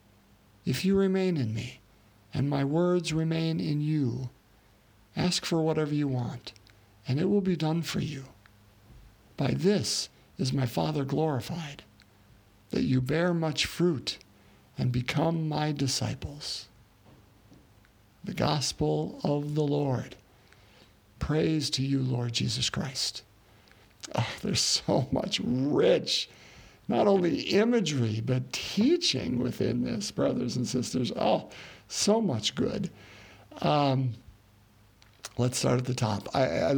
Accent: American